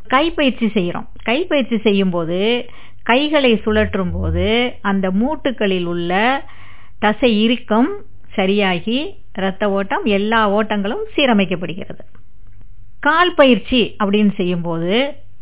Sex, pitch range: female, 180-230 Hz